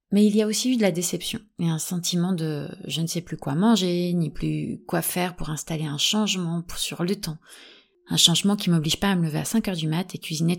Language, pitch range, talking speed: French, 165-210 Hz, 255 wpm